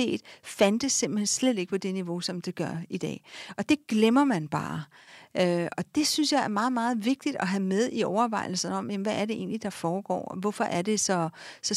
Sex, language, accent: female, Danish, native